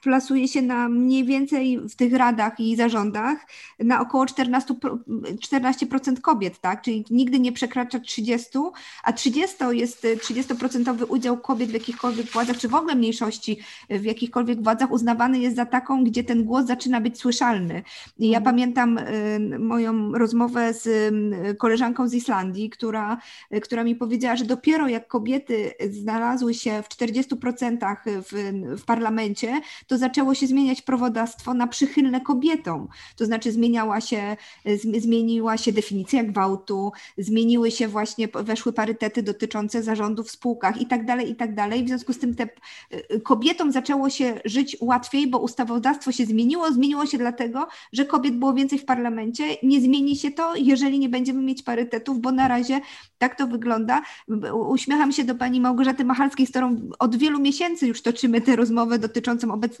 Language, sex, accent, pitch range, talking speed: Polish, female, native, 225-260 Hz, 155 wpm